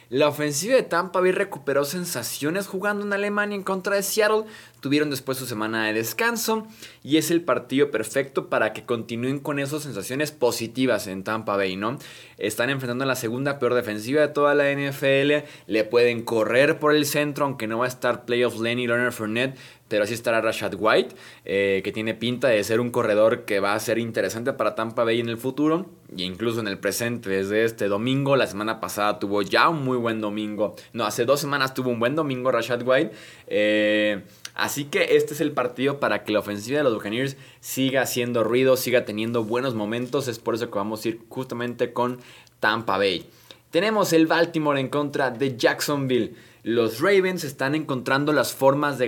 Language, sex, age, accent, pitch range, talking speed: Spanish, male, 20-39, Mexican, 115-150 Hz, 195 wpm